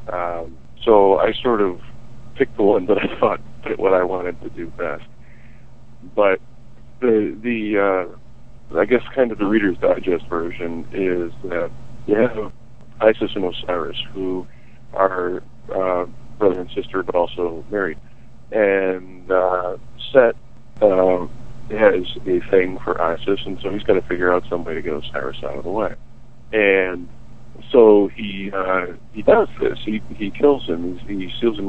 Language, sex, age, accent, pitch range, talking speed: English, male, 40-59, American, 90-110 Hz, 165 wpm